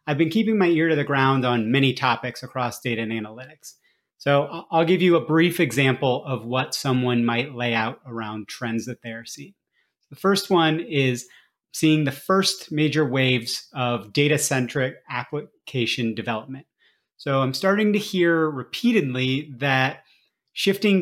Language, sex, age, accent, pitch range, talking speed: English, male, 30-49, American, 125-155 Hz, 155 wpm